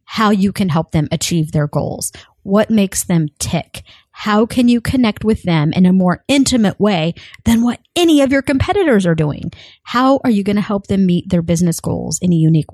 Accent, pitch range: American, 175-240 Hz